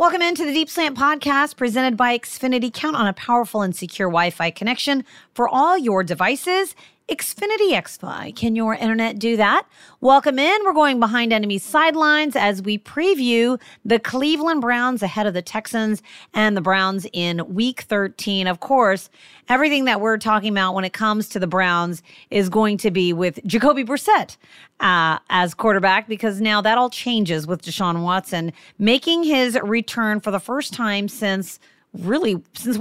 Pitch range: 180-245 Hz